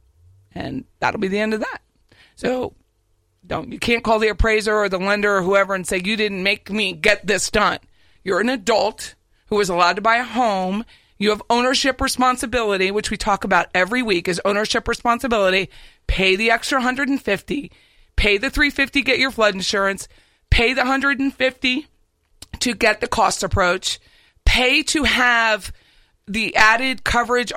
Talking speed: 165 wpm